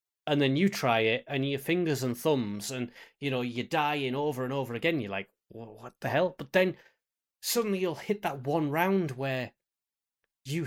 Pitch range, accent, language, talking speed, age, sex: 135-175 Hz, British, English, 195 wpm, 30-49, male